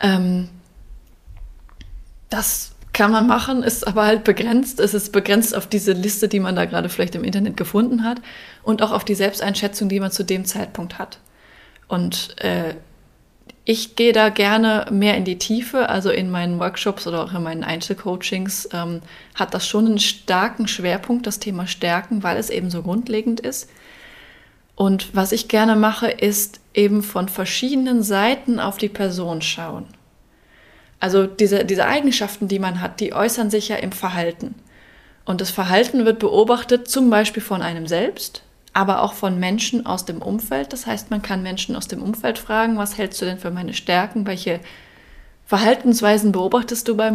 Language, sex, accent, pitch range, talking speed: German, female, German, 185-220 Hz, 170 wpm